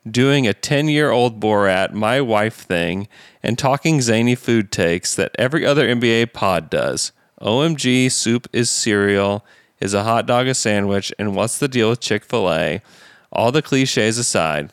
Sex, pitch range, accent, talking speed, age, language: male, 100-120 Hz, American, 155 wpm, 30-49, English